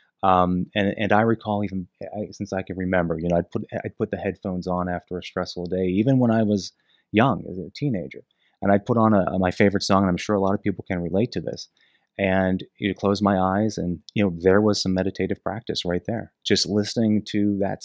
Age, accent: 30-49, American